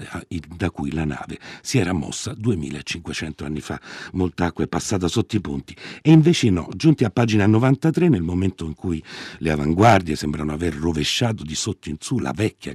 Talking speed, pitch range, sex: 185 wpm, 80-120 Hz, male